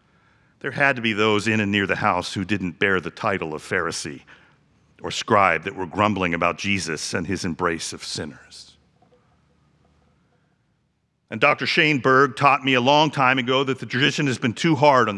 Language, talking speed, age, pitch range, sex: English, 185 wpm, 50-69, 100-135 Hz, male